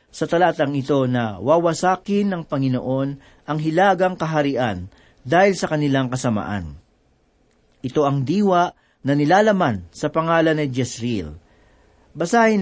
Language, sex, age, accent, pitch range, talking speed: Filipino, male, 40-59, native, 130-175 Hz, 115 wpm